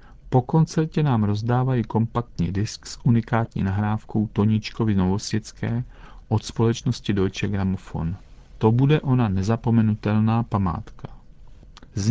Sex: male